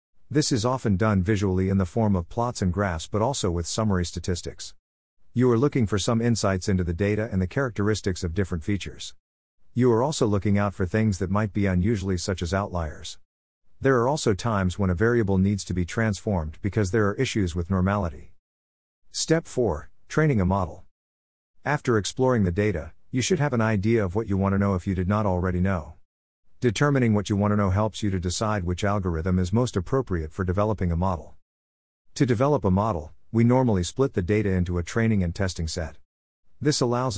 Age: 50-69